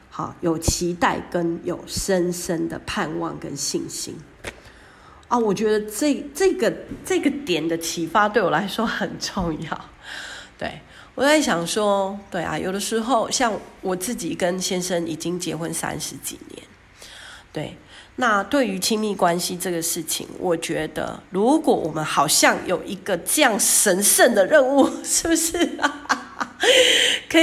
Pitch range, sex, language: 175-270 Hz, female, Chinese